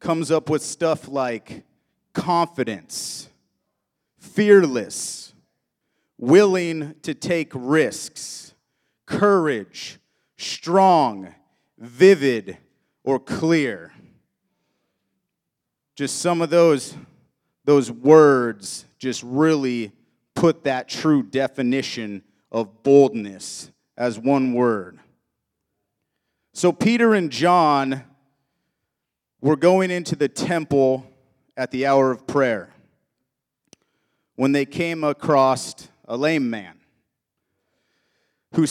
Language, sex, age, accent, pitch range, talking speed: English, male, 30-49, American, 130-165 Hz, 85 wpm